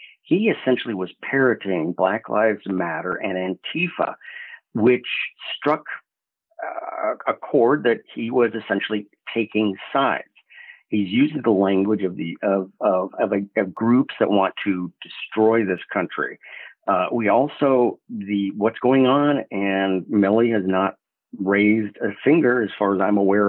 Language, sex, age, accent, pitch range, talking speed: English, male, 50-69, American, 95-120 Hz, 145 wpm